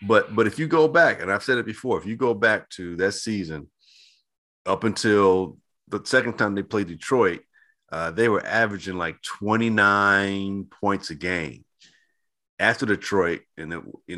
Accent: American